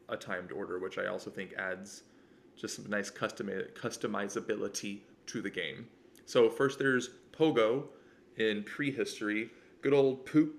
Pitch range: 110-130 Hz